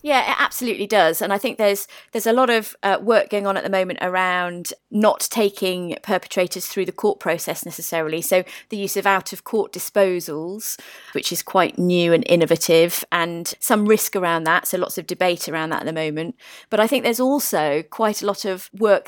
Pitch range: 180-215 Hz